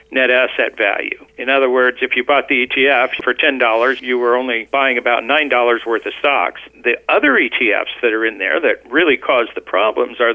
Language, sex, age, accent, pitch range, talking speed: English, male, 50-69, American, 125-150 Hz, 205 wpm